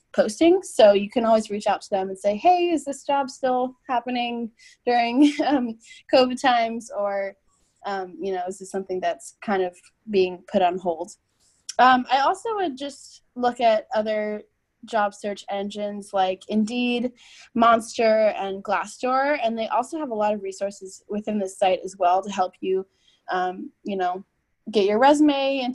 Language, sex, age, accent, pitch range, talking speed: English, female, 20-39, American, 195-245 Hz, 170 wpm